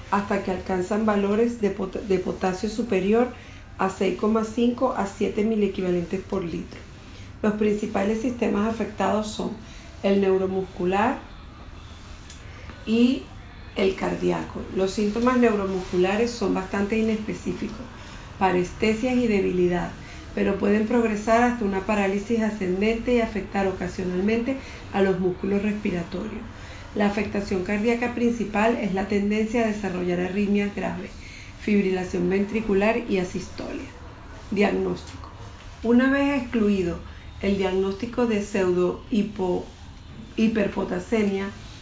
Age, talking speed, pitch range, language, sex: 40-59, 105 wpm, 185-220 Hz, English, female